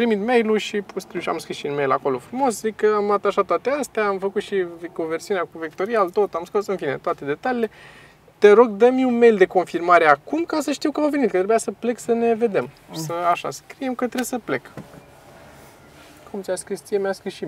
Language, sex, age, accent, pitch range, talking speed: Romanian, male, 20-39, native, 160-235 Hz, 225 wpm